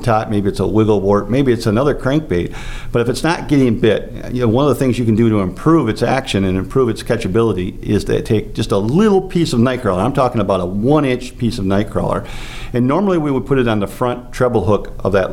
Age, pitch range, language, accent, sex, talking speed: 50-69, 105-130 Hz, English, American, male, 245 wpm